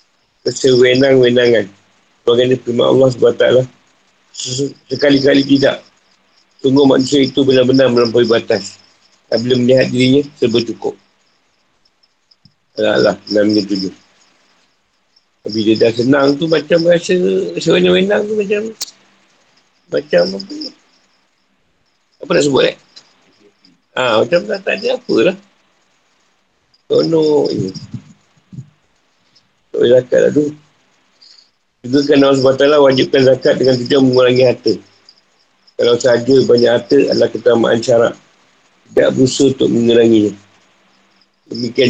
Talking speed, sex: 105 wpm, male